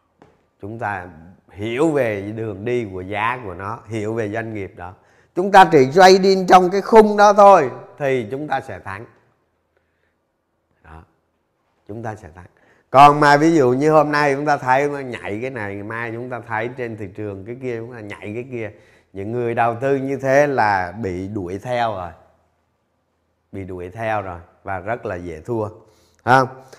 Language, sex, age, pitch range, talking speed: Vietnamese, male, 20-39, 105-150 Hz, 195 wpm